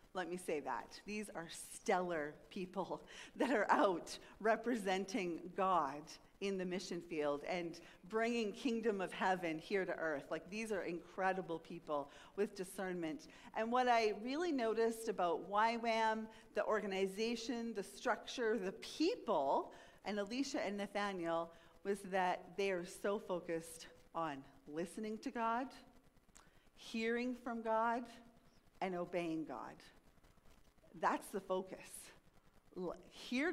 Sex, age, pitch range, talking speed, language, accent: female, 40-59, 180-235 Hz, 125 wpm, English, American